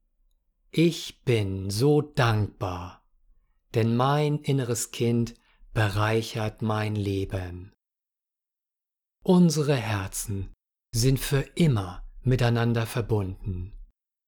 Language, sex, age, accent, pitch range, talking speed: German, male, 50-69, German, 100-135 Hz, 75 wpm